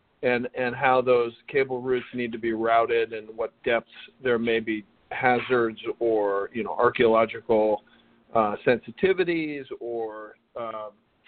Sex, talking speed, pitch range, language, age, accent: male, 135 wpm, 115-135 Hz, English, 40-59, American